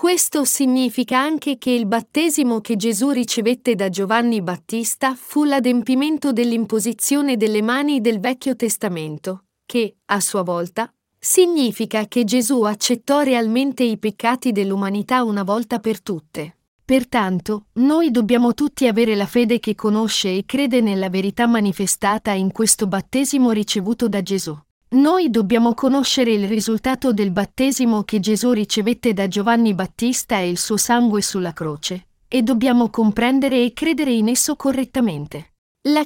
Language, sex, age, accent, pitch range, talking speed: Italian, female, 40-59, native, 205-255 Hz, 140 wpm